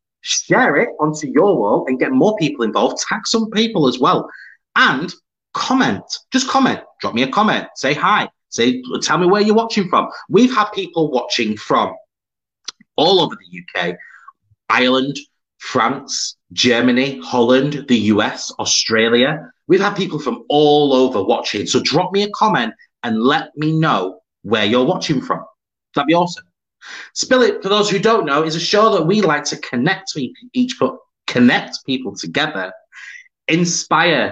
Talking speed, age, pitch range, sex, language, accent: 165 wpm, 30-49, 125-210 Hz, male, English, British